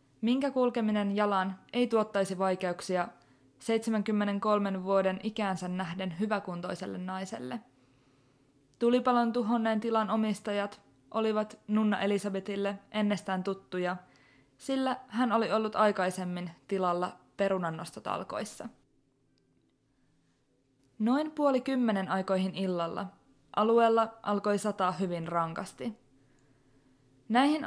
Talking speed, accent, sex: 85 wpm, native, female